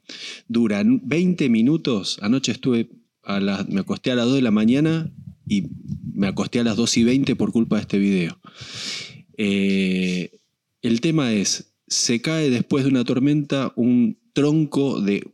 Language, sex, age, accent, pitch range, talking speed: Spanish, male, 20-39, Argentinian, 110-160 Hz, 160 wpm